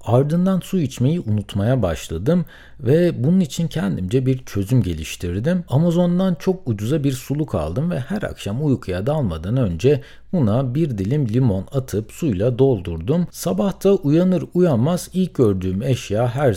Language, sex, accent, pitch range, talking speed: Turkish, male, native, 100-150 Hz, 140 wpm